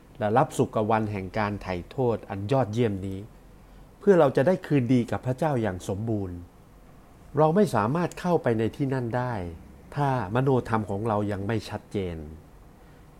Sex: male